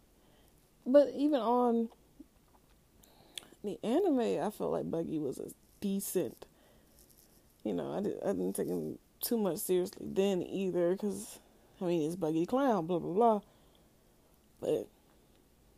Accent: American